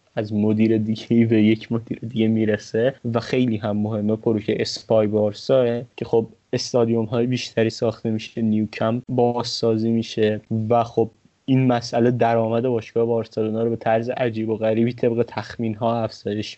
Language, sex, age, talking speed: Persian, male, 20-39, 155 wpm